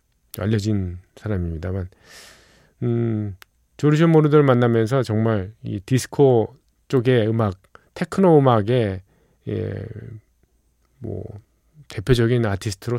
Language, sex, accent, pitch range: Korean, male, native, 105-130 Hz